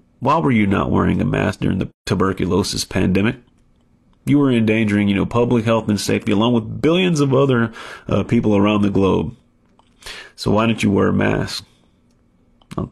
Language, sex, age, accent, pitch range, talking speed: English, male, 30-49, American, 95-120 Hz, 180 wpm